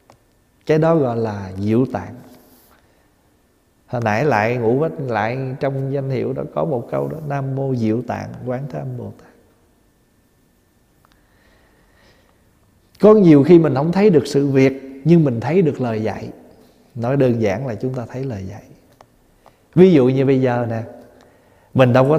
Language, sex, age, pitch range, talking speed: Vietnamese, male, 20-39, 115-160 Hz, 160 wpm